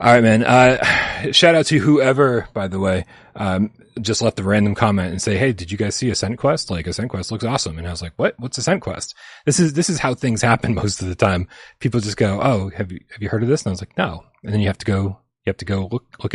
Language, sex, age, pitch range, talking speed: English, male, 30-49, 95-130 Hz, 295 wpm